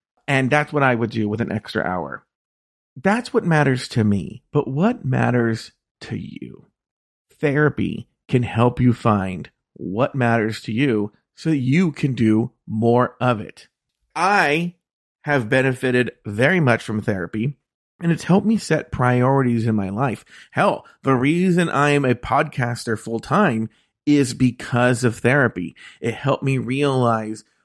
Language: English